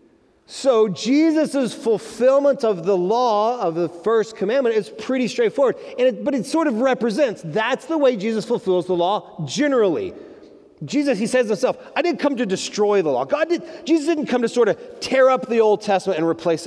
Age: 30-49